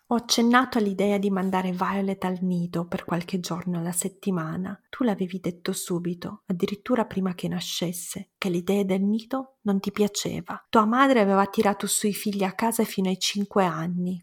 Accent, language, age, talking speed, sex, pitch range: native, Italian, 30-49, 170 wpm, female, 185-210 Hz